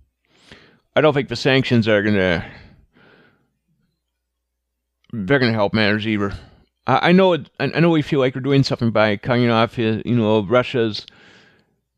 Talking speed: 165 wpm